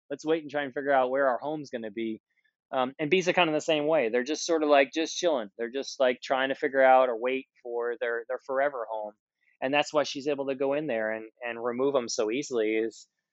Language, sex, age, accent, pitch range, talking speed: English, male, 20-39, American, 110-130 Hz, 265 wpm